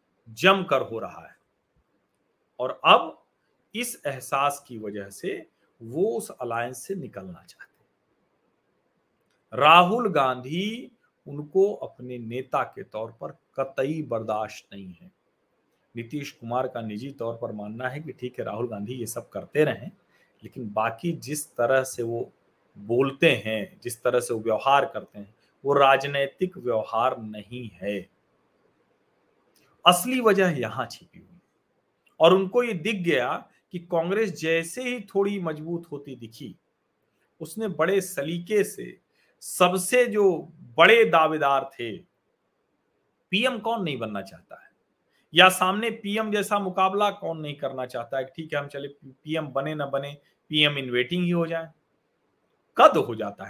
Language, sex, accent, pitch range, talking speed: Hindi, male, native, 125-185 Hz, 140 wpm